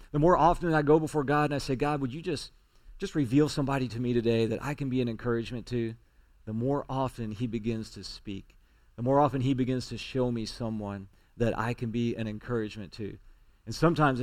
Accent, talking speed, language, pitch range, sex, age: American, 220 wpm, English, 110-145 Hz, male, 40-59